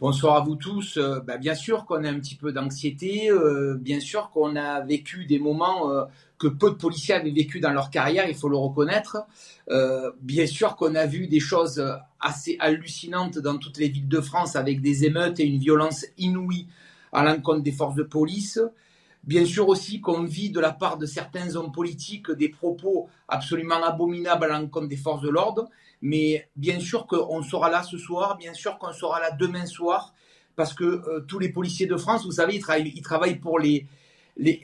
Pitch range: 155-190 Hz